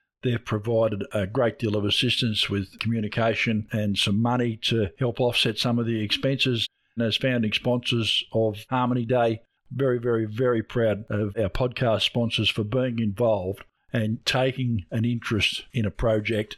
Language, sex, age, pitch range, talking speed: English, male, 50-69, 105-125 Hz, 160 wpm